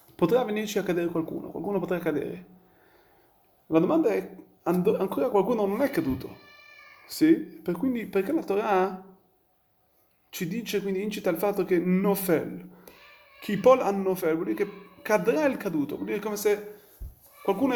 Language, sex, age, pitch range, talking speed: Italian, male, 30-49, 155-200 Hz, 160 wpm